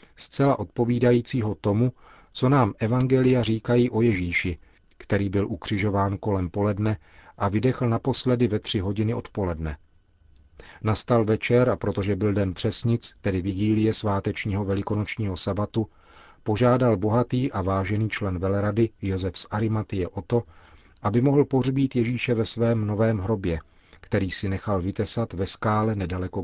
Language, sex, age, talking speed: Czech, male, 40-59, 135 wpm